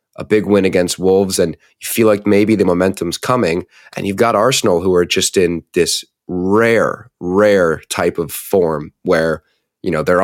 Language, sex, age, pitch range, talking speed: English, male, 30-49, 85-110 Hz, 180 wpm